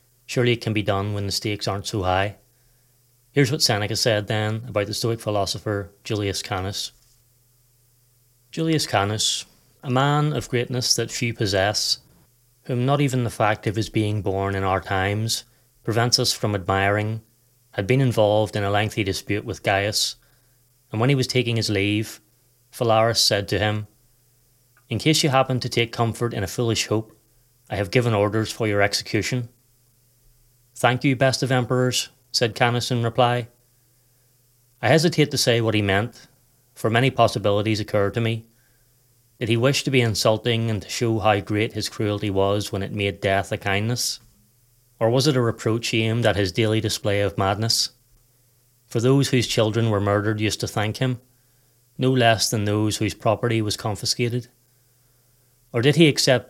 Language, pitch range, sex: English, 105-125 Hz, male